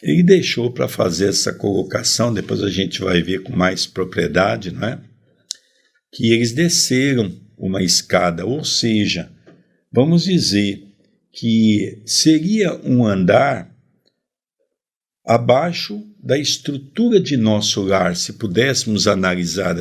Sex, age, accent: male, 60-79, Brazilian